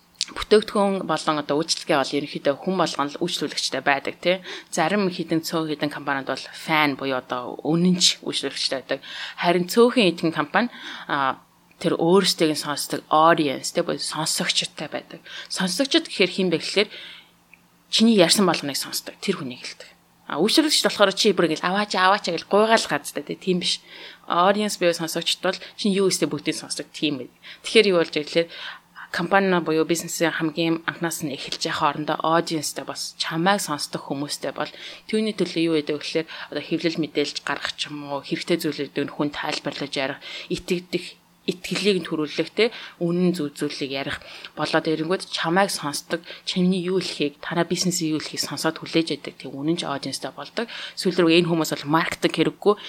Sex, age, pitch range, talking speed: female, 20-39, 150-185 Hz, 135 wpm